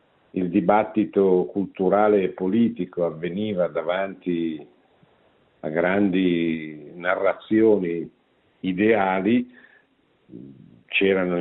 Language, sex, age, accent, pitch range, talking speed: Italian, male, 50-69, native, 85-110 Hz, 65 wpm